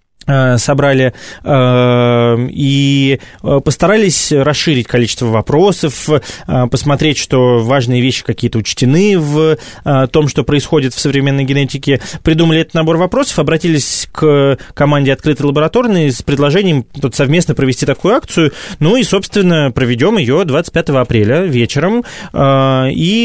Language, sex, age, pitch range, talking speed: Russian, male, 20-39, 125-160 Hz, 115 wpm